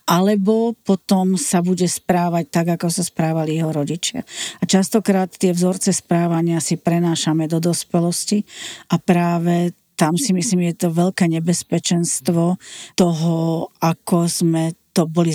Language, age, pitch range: Slovak, 40-59, 160-180 Hz